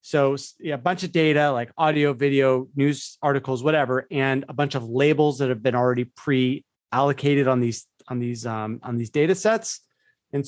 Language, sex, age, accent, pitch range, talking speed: English, male, 30-49, American, 125-150 Hz, 180 wpm